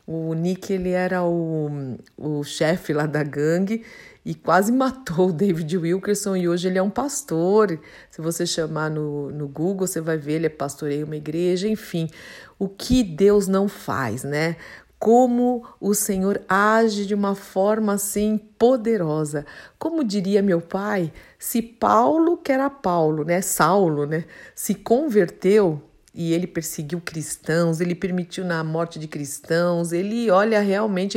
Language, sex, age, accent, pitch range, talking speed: Portuguese, female, 50-69, Brazilian, 165-205 Hz, 150 wpm